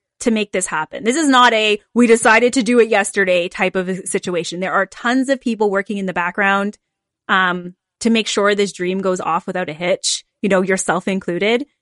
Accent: American